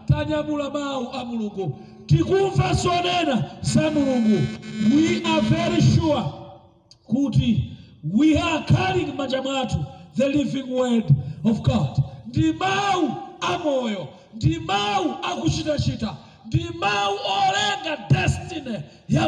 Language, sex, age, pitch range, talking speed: English, male, 50-69, 240-345 Hz, 70 wpm